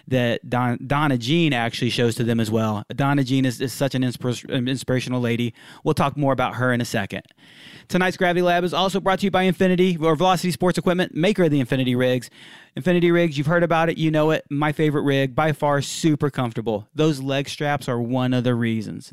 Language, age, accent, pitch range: English, 30-49, American, 130-155 Hz